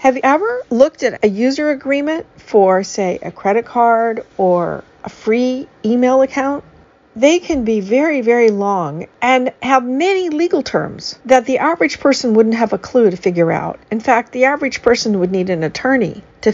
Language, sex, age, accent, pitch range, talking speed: English, female, 50-69, American, 200-265 Hz, 180 wpm